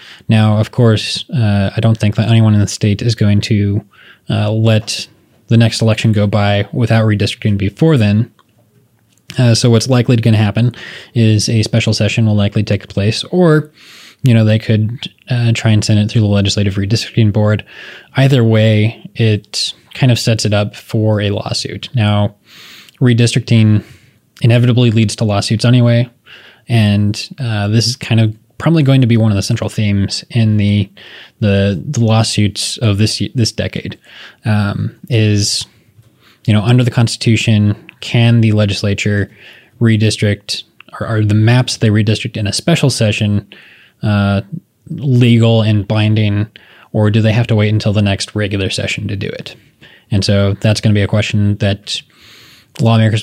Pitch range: 105-115 Hz